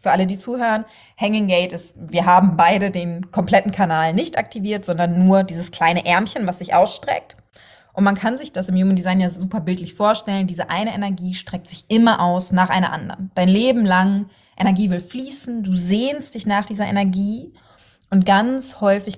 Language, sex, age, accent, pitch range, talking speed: German, female, 20-39, German, 175-205 Hz, 190 wpm